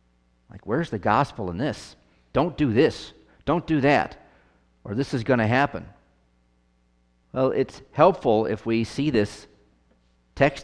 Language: English